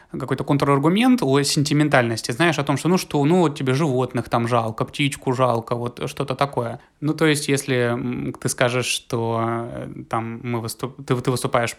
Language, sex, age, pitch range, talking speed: Russian, male, 20-39, 115-145 Hz, 170 wpm